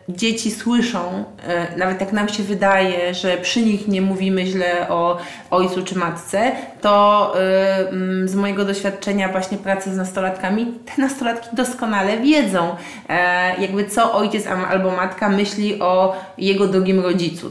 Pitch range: 185-210 Hz